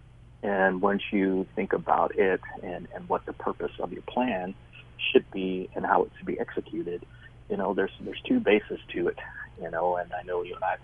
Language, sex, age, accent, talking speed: English, male, 30-49, American, 215 wpm